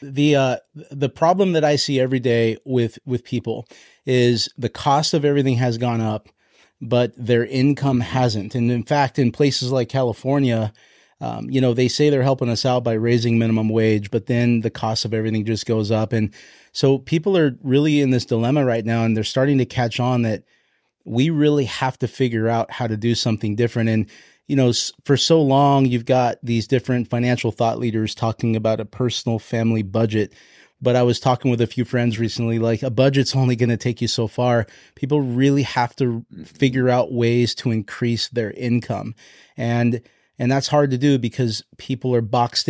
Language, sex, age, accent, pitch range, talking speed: English, male, 30-49, American, 115-135 Hz, 195 wpm